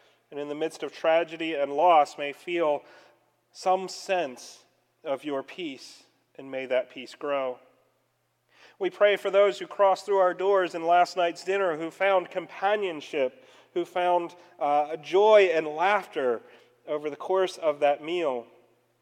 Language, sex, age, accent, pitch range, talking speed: English, male, 40-59, American, 125-150 Hz, 150 wpm